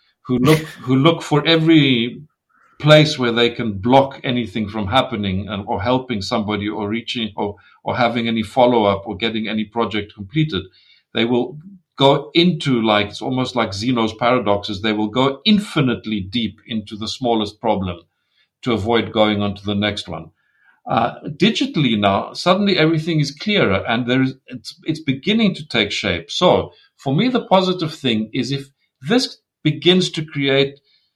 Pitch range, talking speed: 105-155 Hz, 165 wpm